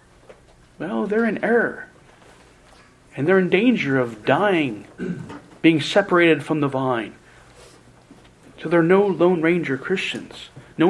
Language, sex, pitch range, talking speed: English, male, 135-210 Hz, 120 wpm